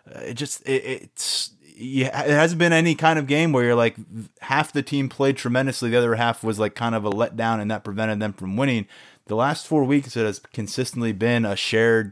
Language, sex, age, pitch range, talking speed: English, male, 20-39, 110-130 Hz, 220 wpm